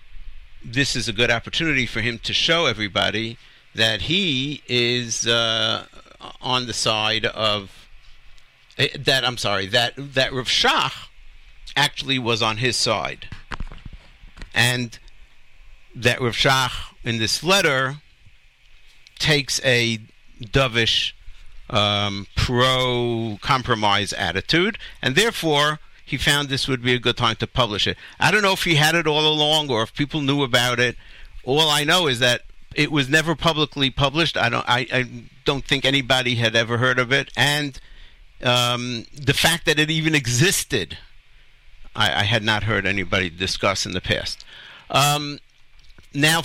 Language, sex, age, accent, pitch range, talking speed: English, male, 60-79, American, 110-140 Hz, 145 wpm